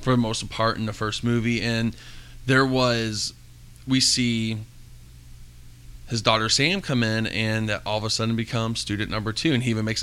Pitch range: 110-125 Hz